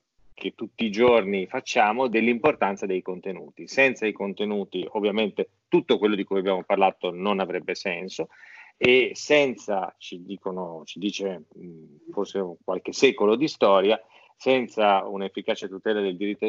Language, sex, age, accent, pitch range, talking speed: Italian, male, 40-59, native, 95-120 Hz, 135 wpm